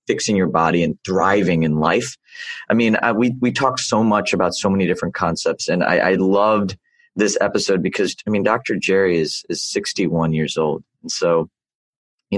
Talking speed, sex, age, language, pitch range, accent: 190 wpm, male, 30-49, English, 85-105 Hz, American